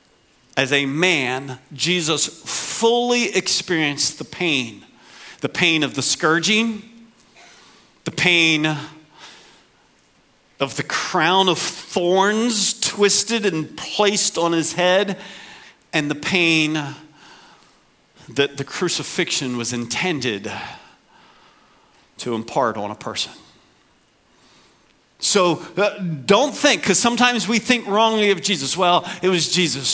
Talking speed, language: 110 wpm, English